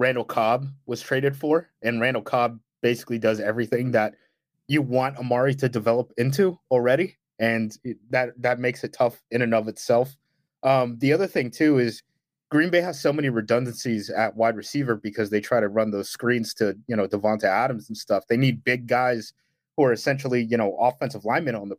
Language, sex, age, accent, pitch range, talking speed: English, male, 20-39, American, 110-135 Hz, 195 wpm